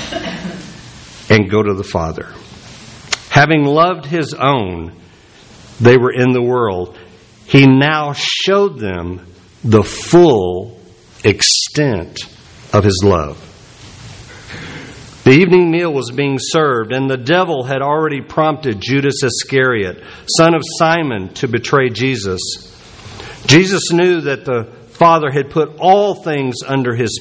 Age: 50-69